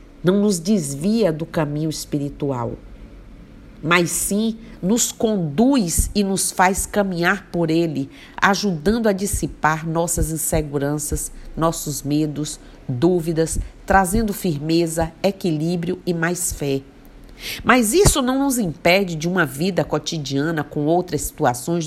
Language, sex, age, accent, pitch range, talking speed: Portuguese, female, 50-69, Brazilian, 145-185 Hz, 115 wpm